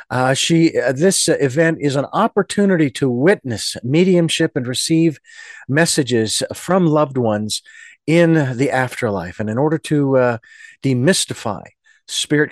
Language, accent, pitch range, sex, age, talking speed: English, American, 130-170 Hz, male, 50-69, 130 wpm